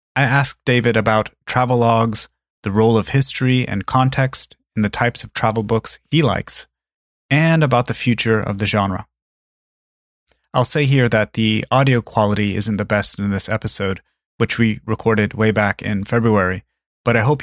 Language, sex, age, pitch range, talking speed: English, male, 30-49, 105-125 Hz, 170 wpm